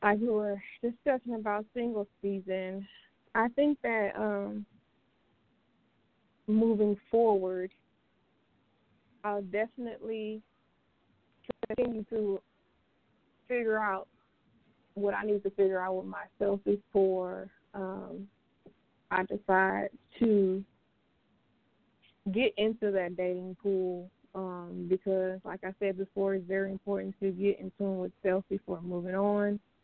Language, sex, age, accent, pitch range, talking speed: English, female, 20-39, American, 185-210 Hz, 110 wpm